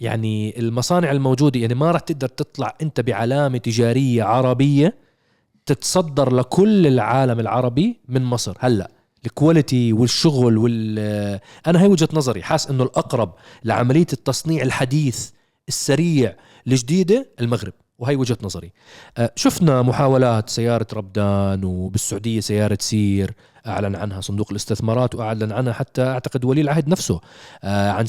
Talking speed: 125 wpm